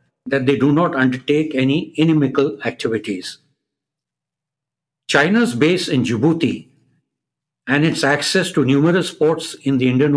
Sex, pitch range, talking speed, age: male, 140-165 Hz, 125 wpm, 60-79